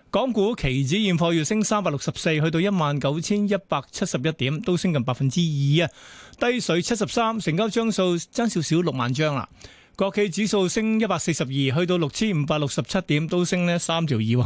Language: Chinese